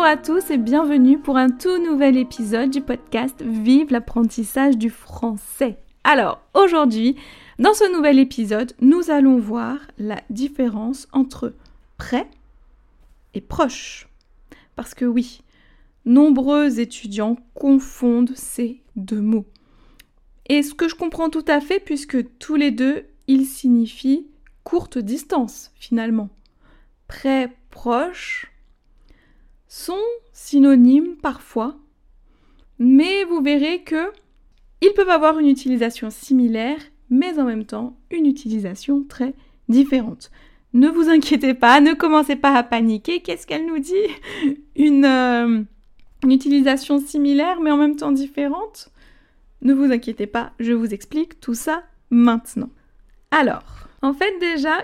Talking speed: 125 wpm